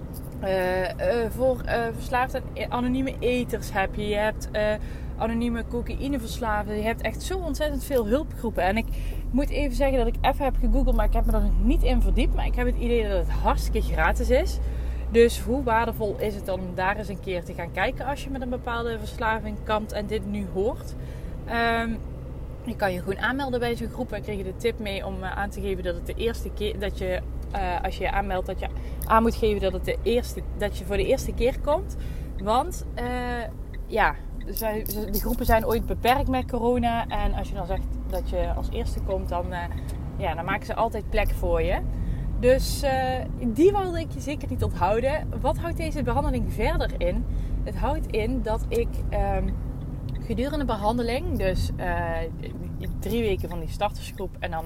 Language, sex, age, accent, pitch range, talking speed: Dutch, female, 20-39, Dutch, 195-250 Hz, 205 wpm